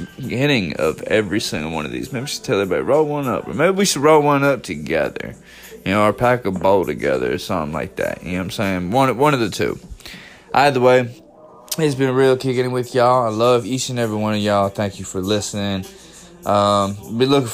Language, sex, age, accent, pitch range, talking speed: English, male, 20-39, American, 100-135 Hz, 235 wpm